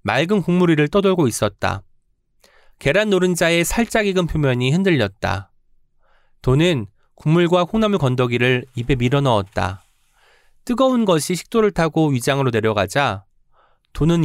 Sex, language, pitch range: male, Korean, 120-185 Hz